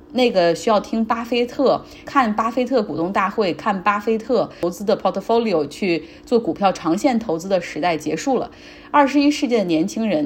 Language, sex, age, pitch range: Chinese, female, 30-49, 170-245 Hz